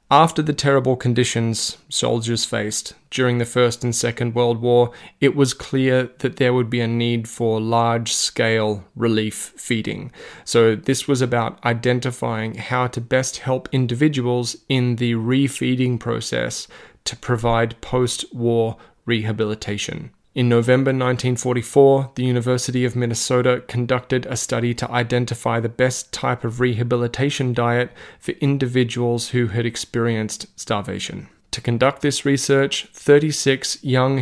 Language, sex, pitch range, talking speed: English, male, 115-130 Hz, 130 wpm